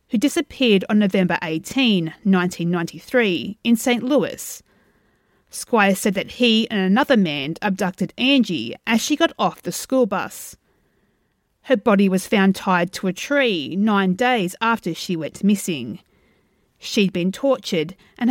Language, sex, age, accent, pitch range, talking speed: English, female, 40-59, Australian, 185-245 Hz, 140 wpm